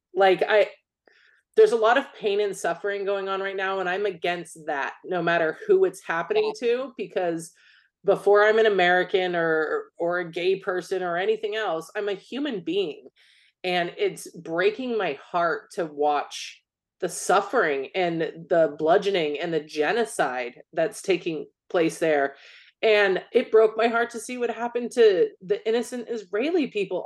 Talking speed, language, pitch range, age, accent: 160 wpm, English, 175-250 Hz, 30-49, American